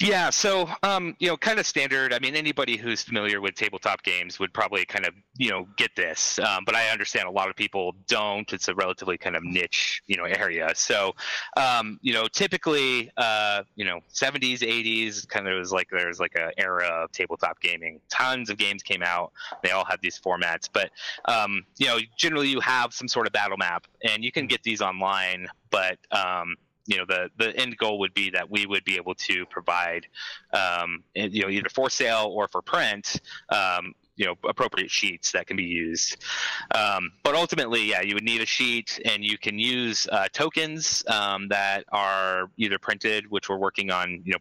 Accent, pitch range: American, 95-115 Hz